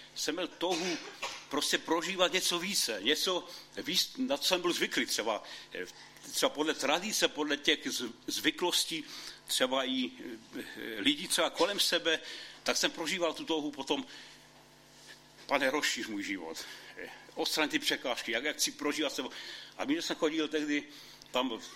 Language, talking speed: Czech, 140 wpm